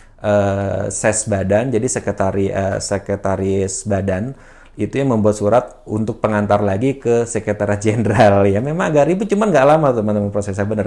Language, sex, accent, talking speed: Indonesian, male, native, 150 wpm